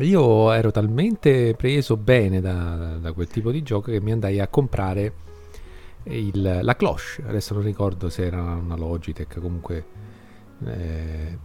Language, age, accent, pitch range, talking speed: Italian, 40-59, native, 90-115 Hz, 145 wpm